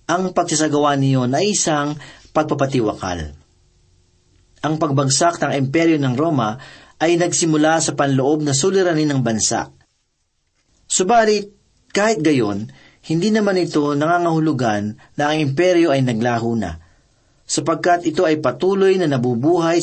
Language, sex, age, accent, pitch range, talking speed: Filipino, male, 40-59, native, 130-175 Hz, 120 wpm